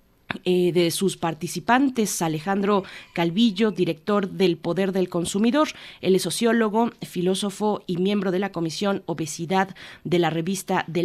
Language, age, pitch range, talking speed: Spanish, 30-49, 170-200 Hz, 135 wpm